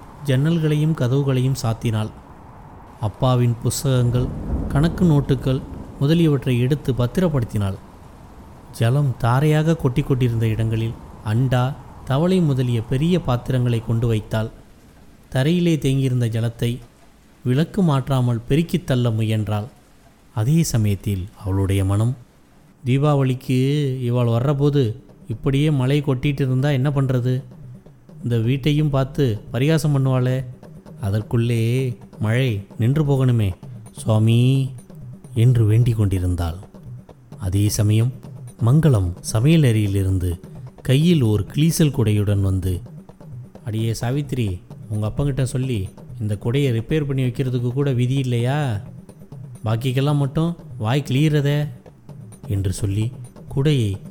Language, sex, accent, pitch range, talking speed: Tamil, male, native, 110-145 Hz, 95 wpm